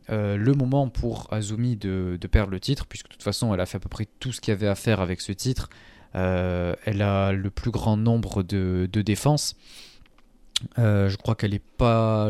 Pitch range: 100-120 Hz